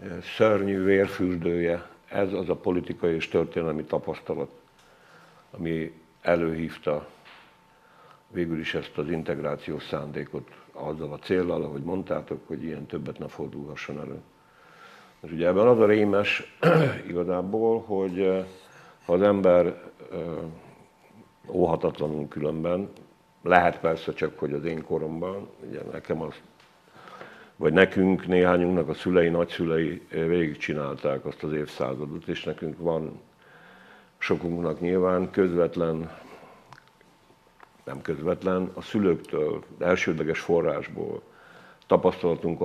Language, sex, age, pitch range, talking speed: Hungarian, male, 50-69, 80-95 Hz, 105 wpm